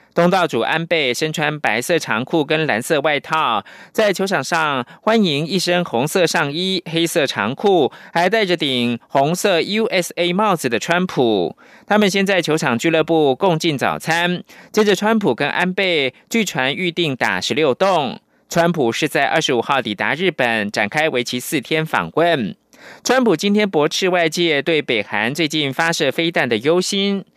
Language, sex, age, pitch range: German, male, 20-39, 150-190 Hz